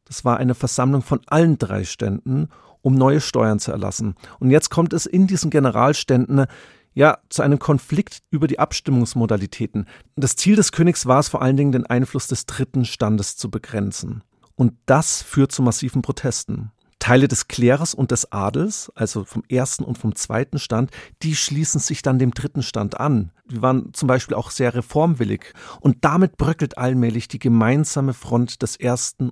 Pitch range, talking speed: 115-145 Hz, 175 wpm